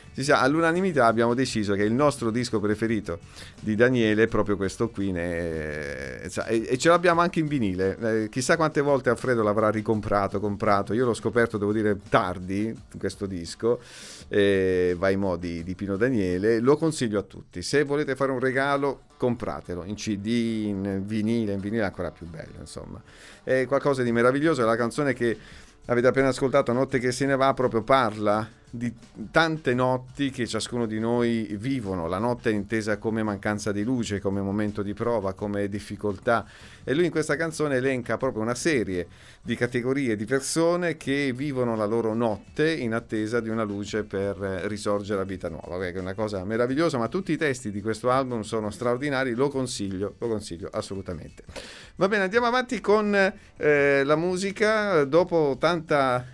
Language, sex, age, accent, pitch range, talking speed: Italian, male, 40-59, native, 105-140 Hz, 170 wpm